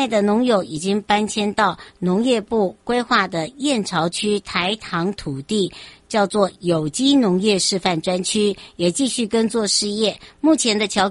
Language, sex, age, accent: Chinese, male, 60-79, American